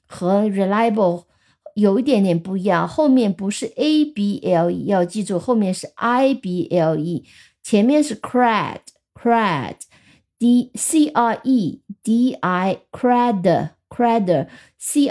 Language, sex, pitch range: Chinese, female, 185-250 Hz